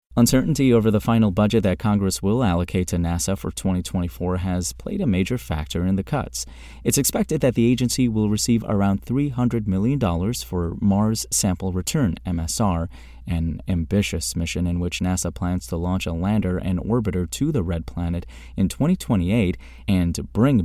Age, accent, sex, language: 30-49, American, male, English